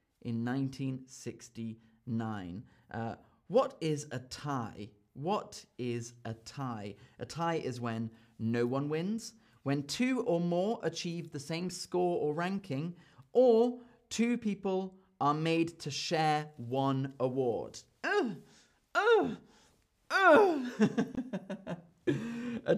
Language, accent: English, British